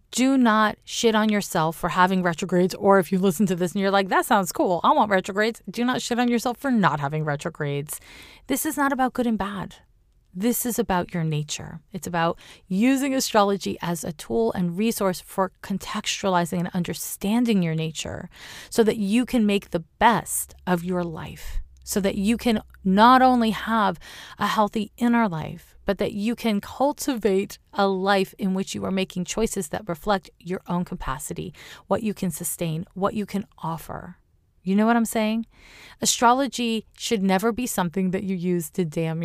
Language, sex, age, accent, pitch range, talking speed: English, female, 30-49, American, 175-225 Hz, 185 wpm